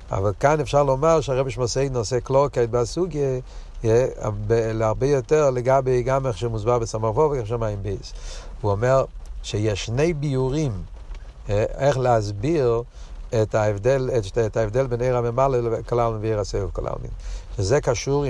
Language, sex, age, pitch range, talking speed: Hebrew, male, 60-79, 100-130 Hz, 125 wpm